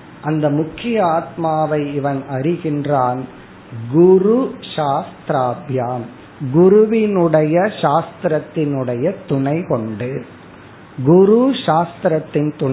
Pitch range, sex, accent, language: 145-185 Hz, male, native, Tamil